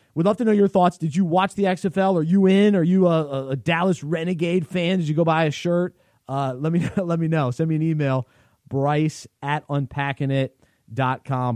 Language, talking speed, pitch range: English, 210 wpm, 125-155 Hz